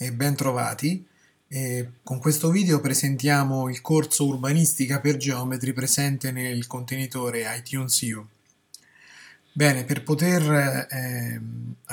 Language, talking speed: Italian, 110 wpm